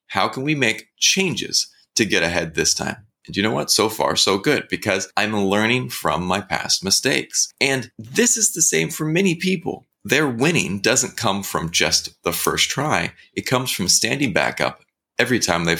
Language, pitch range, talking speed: English, 90-145 Hz, 195 wpm